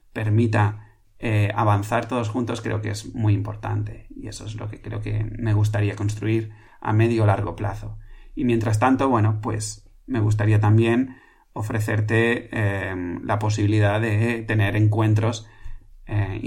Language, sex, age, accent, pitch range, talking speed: Spanish, male, 30-49, Spanish, 105-115 Hz, 150 wpm